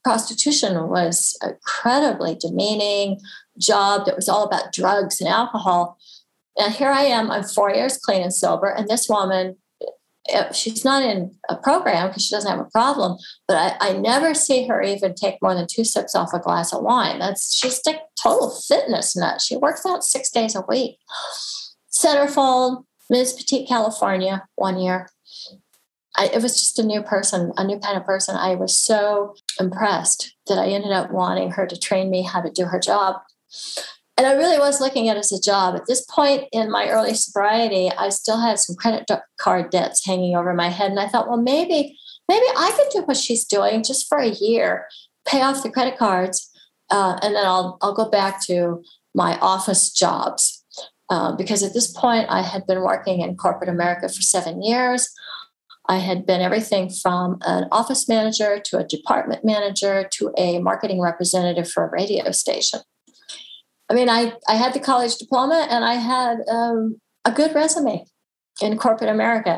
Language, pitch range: English, 190-250 Hz